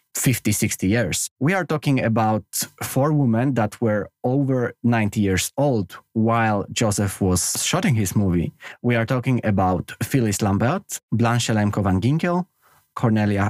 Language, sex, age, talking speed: Polish, male, 20-39, 140 wpm